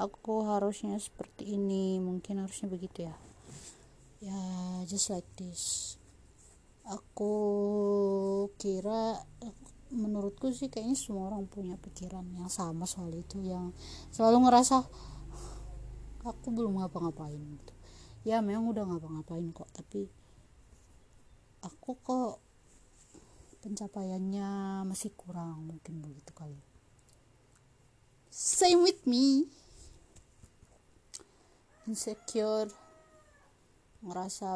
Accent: native